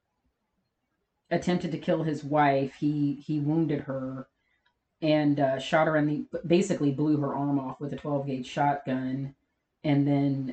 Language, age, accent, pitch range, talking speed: English, 30-49, American, 145-180 Hz, 150 wpm